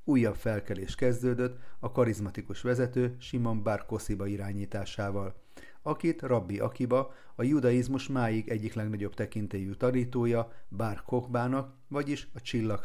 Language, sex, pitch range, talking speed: Hungarian, male, 100-125 Hz, 105 wpm